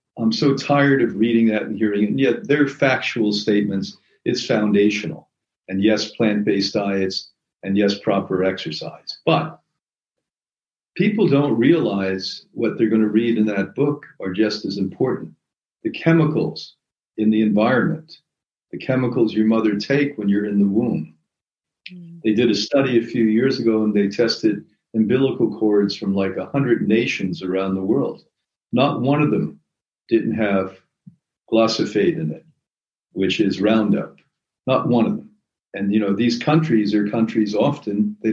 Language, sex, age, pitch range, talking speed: English, male, 50-69, 105-130 Hz, 160 wpm